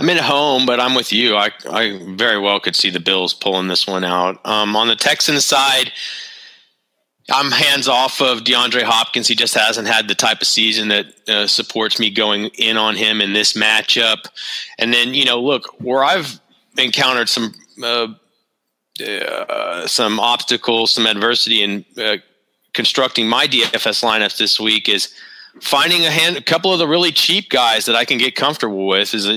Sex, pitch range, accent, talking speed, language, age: male, 105-130 Hz, American, 185 wpm, English, 30-49